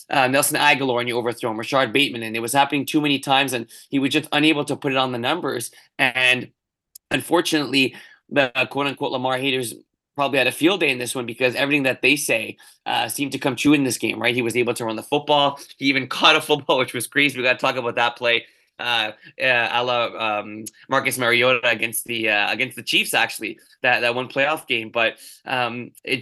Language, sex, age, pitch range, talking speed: English, male, 20-39, 120-145 Hz, 225 wpm